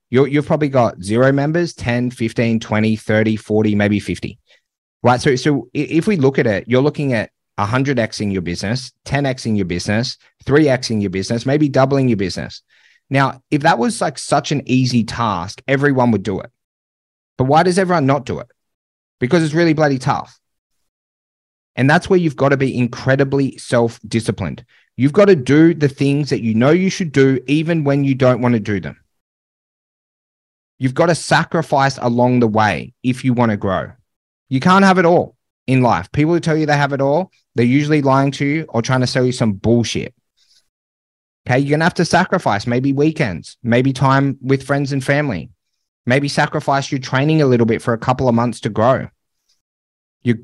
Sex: male